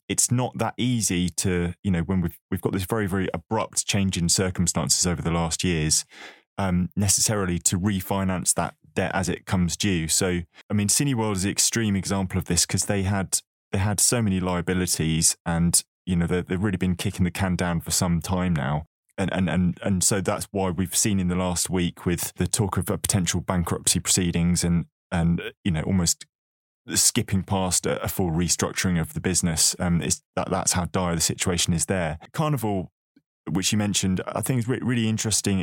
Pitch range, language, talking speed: 90-100 Hz, English, 200 wpm